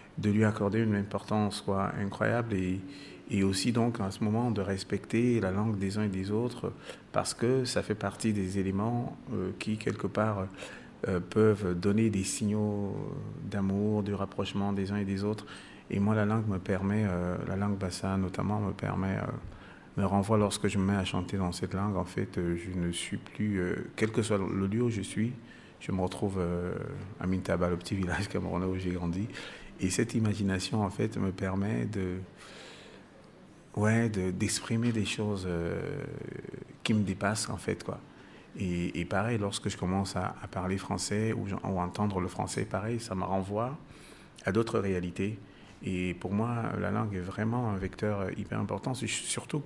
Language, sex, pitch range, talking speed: French, male, 95-110 Hz, 190 wpm